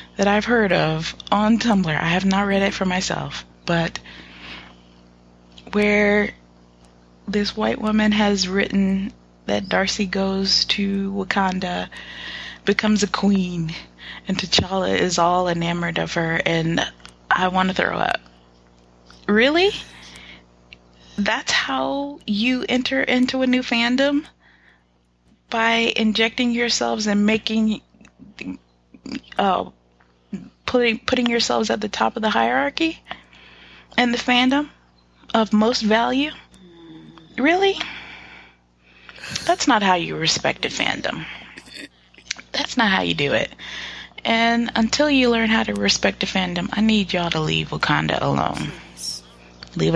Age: 20-39